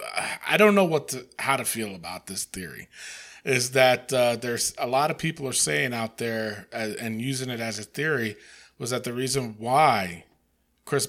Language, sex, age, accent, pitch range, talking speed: English, male, 40-59, American, 110-145 Hz, 195 wpm